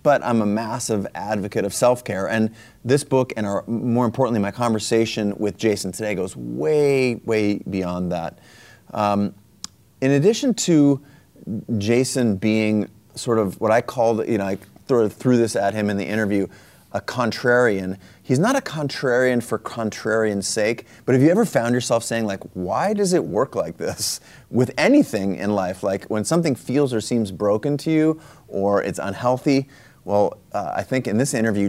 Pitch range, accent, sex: 100-125 Hz, American, male